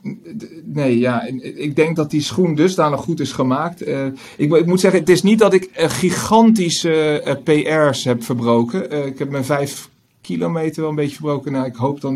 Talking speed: 200 wpm